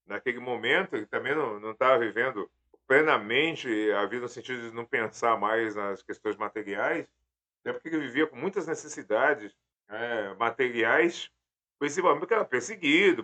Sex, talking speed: male, 145 wpm